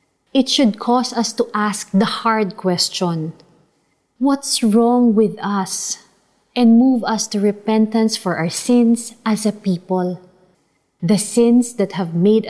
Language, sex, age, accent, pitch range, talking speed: Filipino, female, 20-39, native, 185-230 Hz, 140 wpm